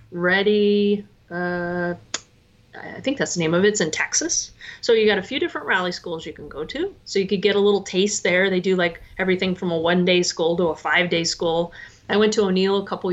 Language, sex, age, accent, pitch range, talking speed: English, female, 30-49, American, 175-215 Hz, 230 wpm